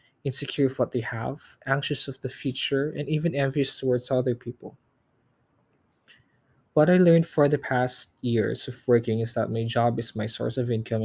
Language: Filipino